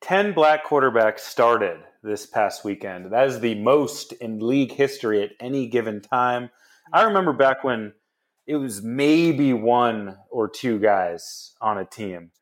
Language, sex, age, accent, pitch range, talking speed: English, male, 30-49, American, 115-140 Hz, 155 wpm